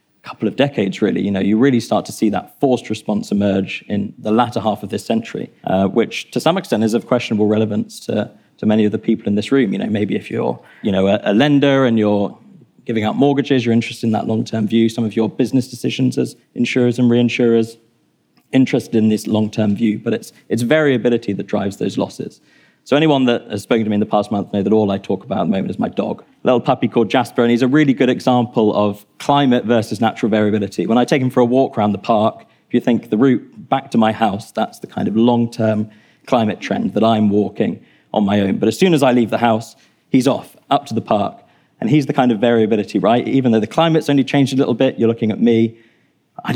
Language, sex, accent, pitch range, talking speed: English, male, British, 110-130 Hz, 245 wpm